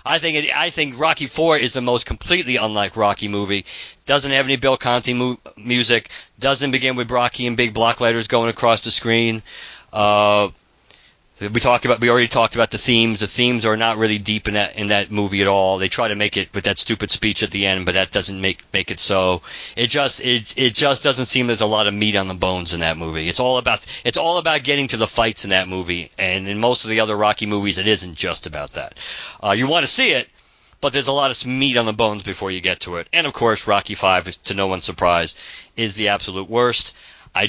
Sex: male